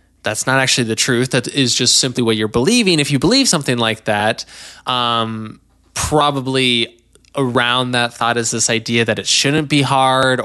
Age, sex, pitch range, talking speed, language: 20-39, male, 110-135 Hz, 180 wpm, English